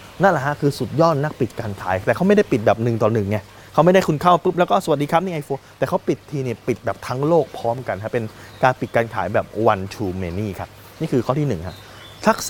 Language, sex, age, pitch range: Thai, male, 20-39, 110-150 Hz